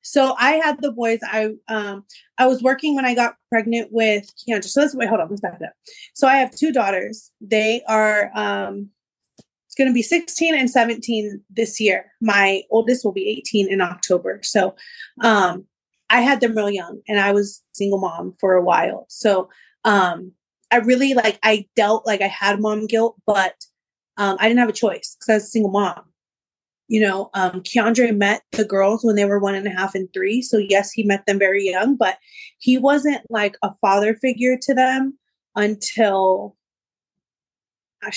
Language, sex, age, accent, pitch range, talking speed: English, female, 30-49, American, 200-245 Hz, 195 wpm